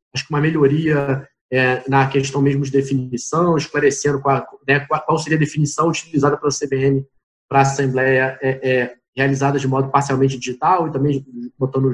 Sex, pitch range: male, 135-160 Hz